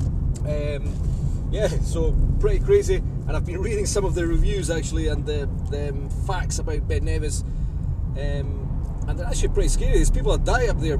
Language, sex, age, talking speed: English, male, 30-49, 180 wpm